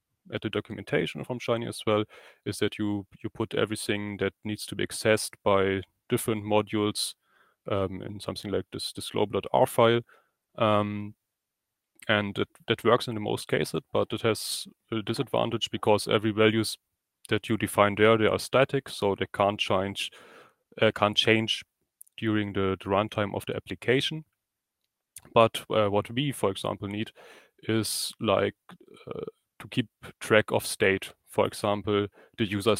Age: 30-49